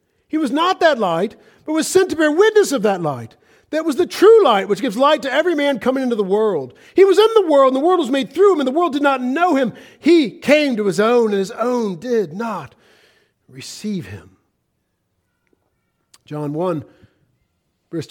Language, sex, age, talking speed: English, male, 50-69, 210 wpm